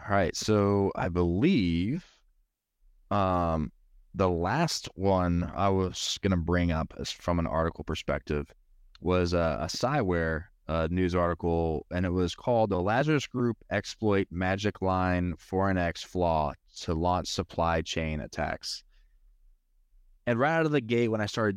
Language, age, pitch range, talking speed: English, 20-39, 85-110 Hz, 145 wpm